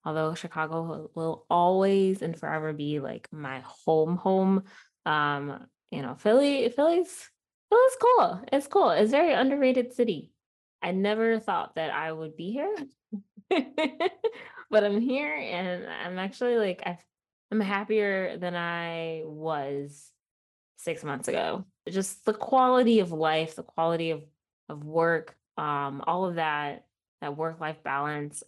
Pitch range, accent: 155-215 Hz, American